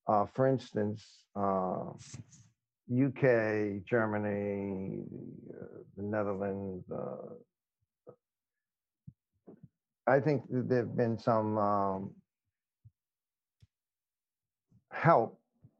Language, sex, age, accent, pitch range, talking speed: English, male, 50-69, American, 110-135 Hz, 70 wpm